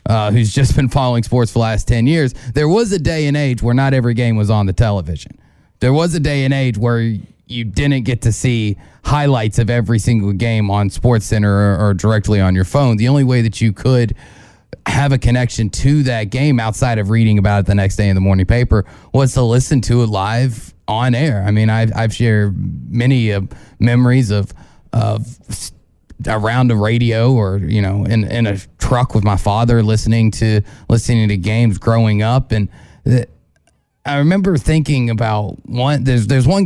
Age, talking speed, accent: 30-49, 200 wpm, American